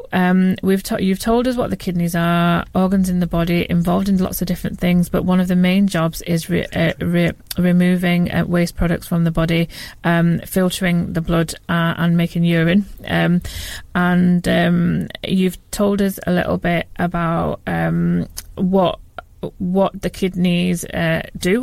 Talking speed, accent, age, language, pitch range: 170 wpm, British, 30-49, English, 175-200 Hz